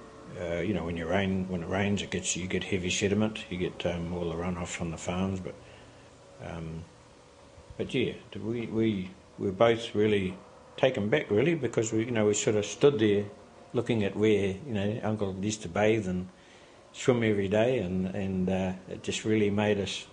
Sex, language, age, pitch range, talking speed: male, English, 60-79, 90-110 Hz, 200 wpm